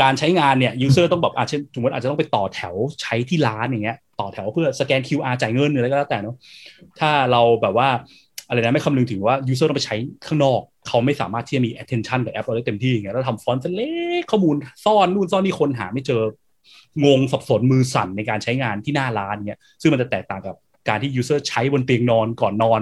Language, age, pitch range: Thai, 20-39, 110-140 Hz